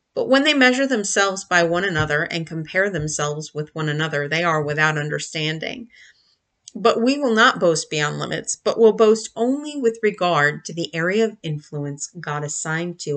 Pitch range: 150-200 Hz